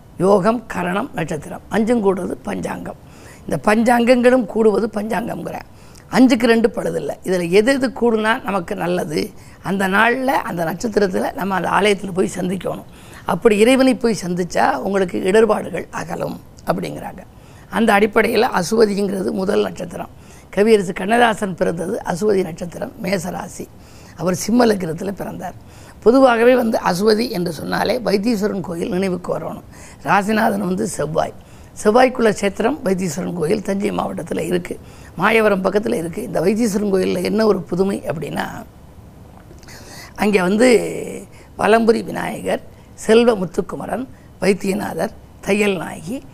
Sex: female